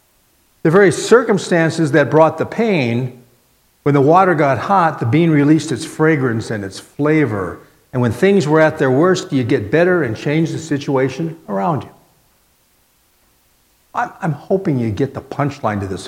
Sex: male